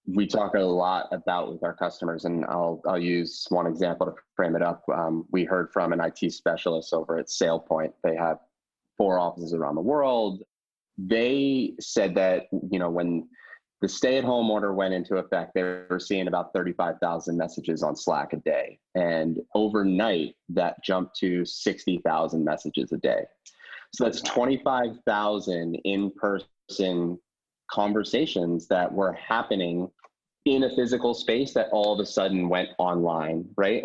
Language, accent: English, American